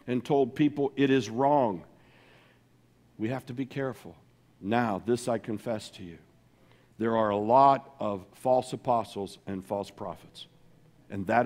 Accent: American